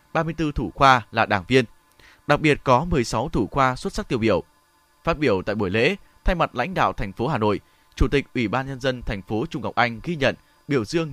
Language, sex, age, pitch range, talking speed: Vietnamese, male, 20-39, 120-155 Hz, 235 wpm